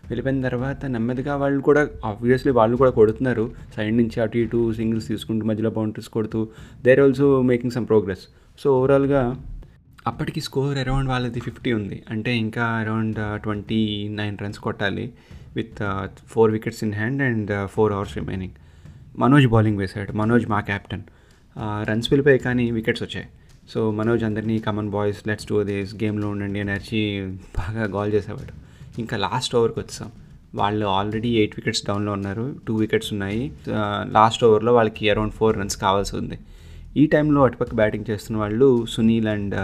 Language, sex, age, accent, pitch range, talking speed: Telugu, male, 20-39, native, 105-120 Hz, 155 wpm